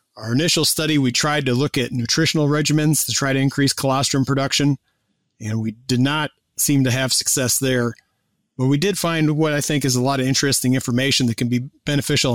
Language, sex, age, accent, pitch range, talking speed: English, male, 40-59, American, 125-155 Hz, 205 wpm